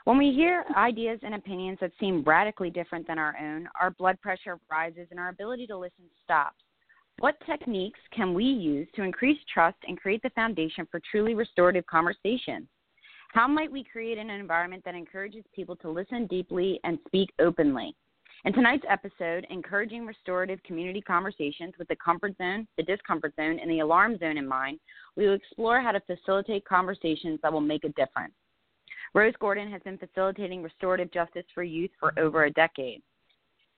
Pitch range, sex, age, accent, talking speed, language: 170-210 Hz, female, 30-49, American, 175 wpm, English